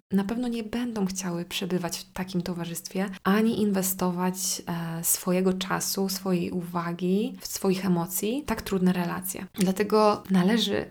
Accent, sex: native, female